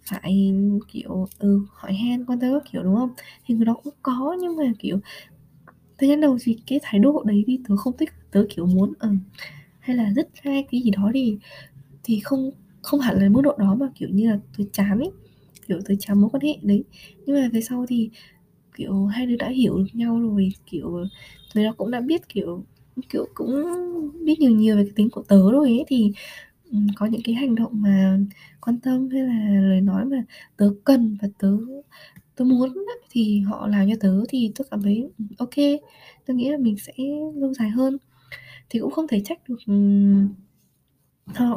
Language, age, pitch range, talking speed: Vietnamese, 20-39, 200-255 Hz, 210 wpm